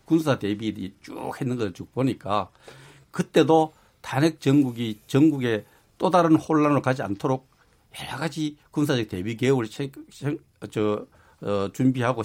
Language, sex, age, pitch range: Korean, male, 60-79, 120-165 Hz